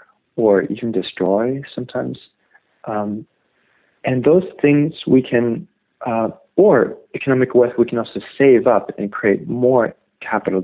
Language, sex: English, male